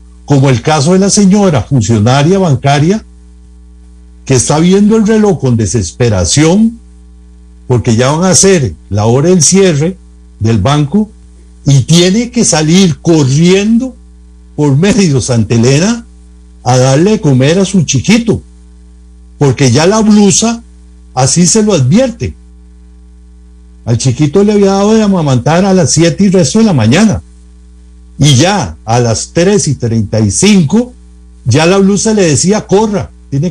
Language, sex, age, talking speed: Spanish, male, 60-79, 140 wpm